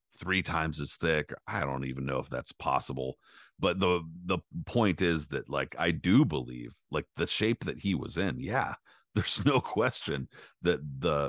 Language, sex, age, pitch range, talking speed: English, male, 40-59, 70-85 Hz, 180 wpm